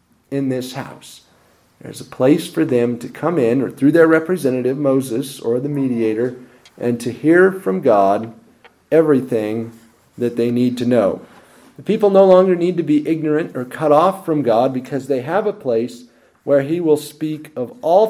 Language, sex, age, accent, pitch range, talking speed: English, male, 40-59, American, 120-160 Hz, 180 wpm